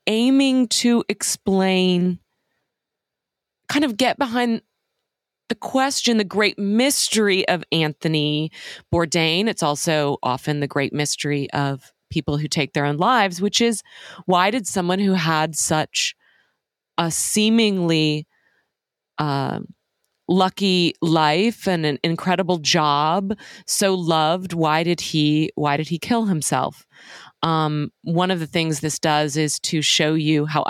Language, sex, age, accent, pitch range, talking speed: English, female, 30-49, American, 150-190 Hz, 125 wpm